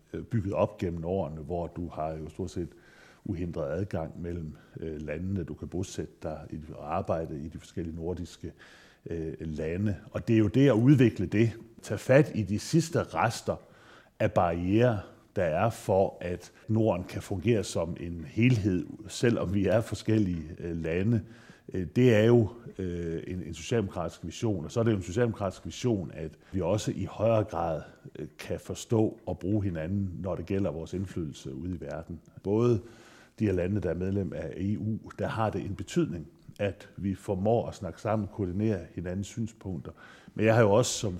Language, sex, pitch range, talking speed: Danish, male, 85-110 Hz, 175 wpm